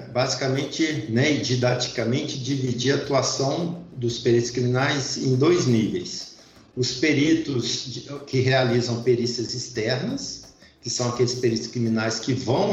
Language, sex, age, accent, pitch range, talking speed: Portuguese, male, 50-69, Brazilian, 115-135 Hz, 120 wpm